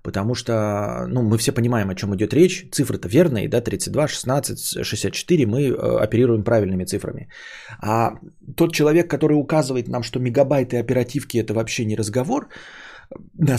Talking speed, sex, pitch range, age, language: 155 wpm, male, 115-155 Hz, 30-49, Bulgarian